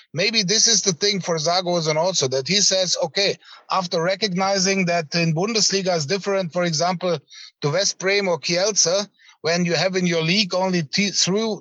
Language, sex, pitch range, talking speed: English, male, 170-200 Hz, 175 wpm